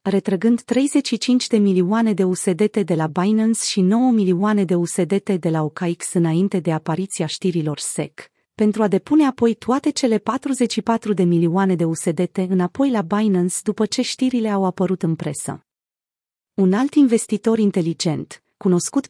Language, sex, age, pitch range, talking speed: Romanian, female, 30-49, 180-225 Hz, 150 wpm